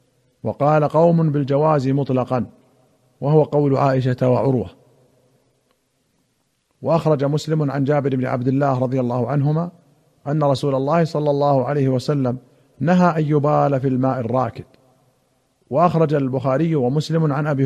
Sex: male